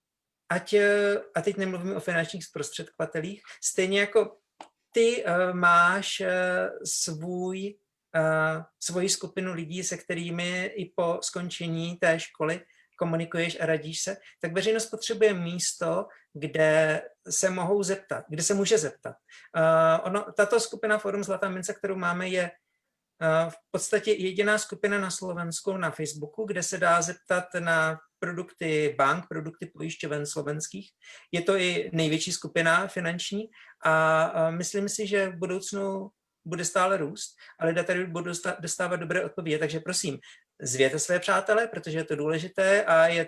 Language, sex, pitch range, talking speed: Slovak, male, 160-200 Hz, 140 wpm